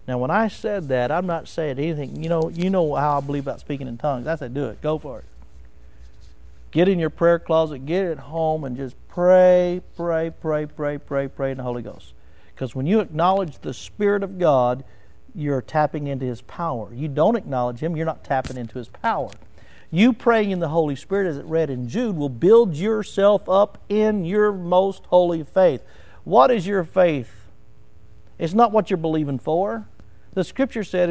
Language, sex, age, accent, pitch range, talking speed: English, male, 50-69, American, 140-215 Hz, 200 wpm